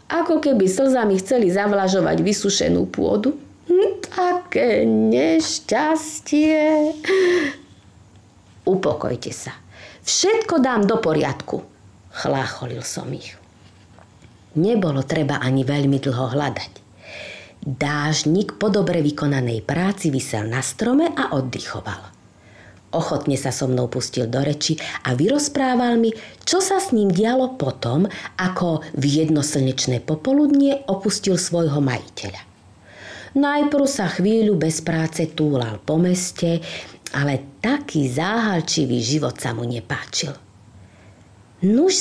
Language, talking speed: Slovak, 105 wpm